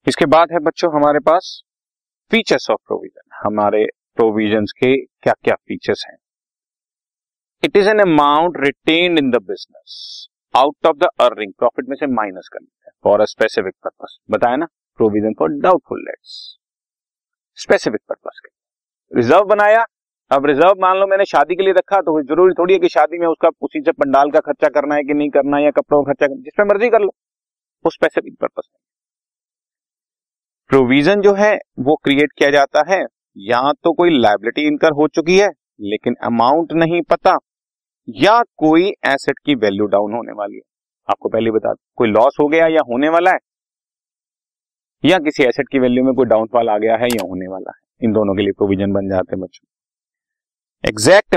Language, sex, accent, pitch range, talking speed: Hindi, male, native, 120-185 Hz, 170 wpm